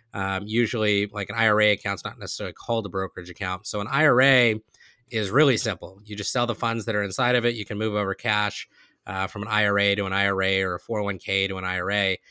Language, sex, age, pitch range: English, male, 20-39, 100-120 Hz